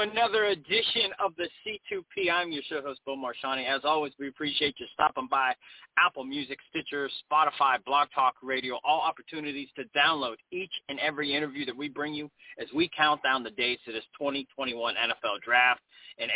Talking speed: 180 wpm